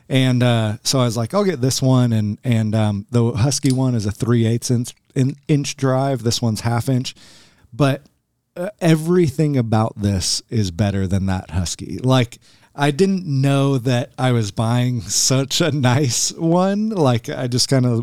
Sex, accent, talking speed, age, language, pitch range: male, American, 180 wpm, 30-49, English, 115-140 Hz